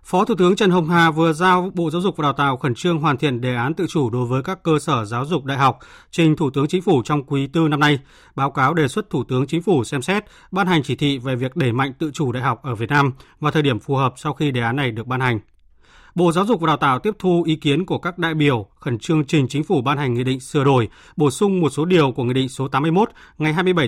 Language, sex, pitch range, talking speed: Vietnamese, male, 130-165 Hz, 290 wpm